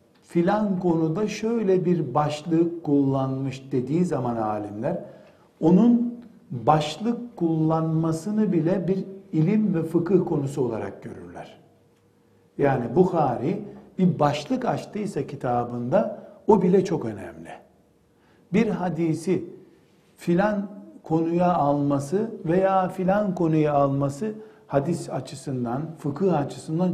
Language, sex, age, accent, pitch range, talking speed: Turkish, male, 60-79, native, 145-190 Hz, 95 wpm